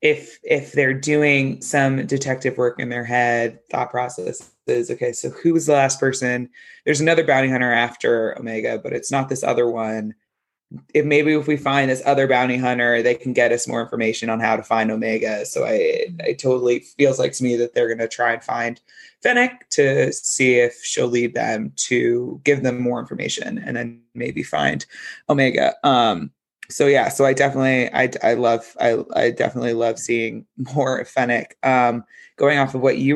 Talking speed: 190 wpm